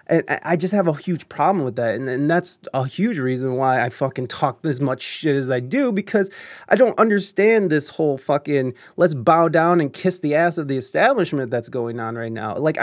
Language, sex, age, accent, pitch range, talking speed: English, male, 20-39, American, 140-195 Hz, 225 wpm